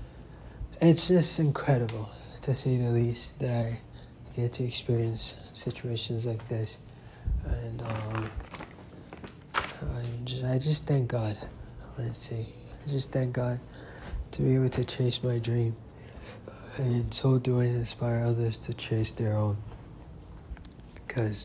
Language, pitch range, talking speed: English, 110-125 Hz, 130 wpm